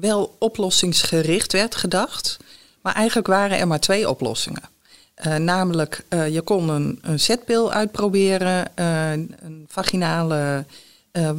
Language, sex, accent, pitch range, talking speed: Dutch, female, Dutch, 160-205 Hz, 125 wpm